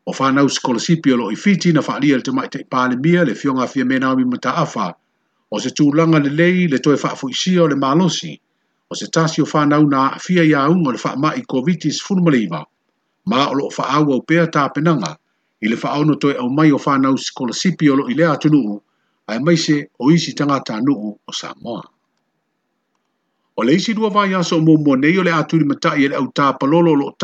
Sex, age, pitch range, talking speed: male, 50-69, 140-170 Hz, 175 wpm